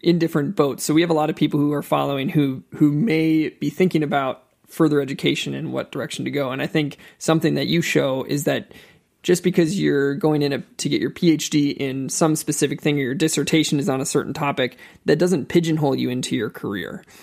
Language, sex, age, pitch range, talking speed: English, male, 20-39, 140-160 Hz, 225 wpm